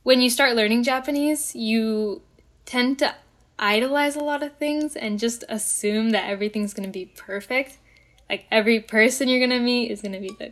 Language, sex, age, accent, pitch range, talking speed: English, female, 10-29, American, 205-245 Hz, 195 wpm